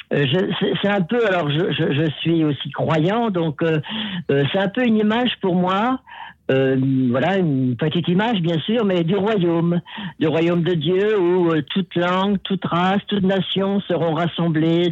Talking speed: 175 wpm